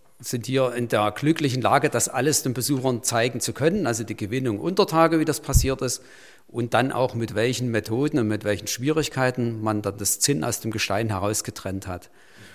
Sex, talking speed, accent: male, 195 wpm, German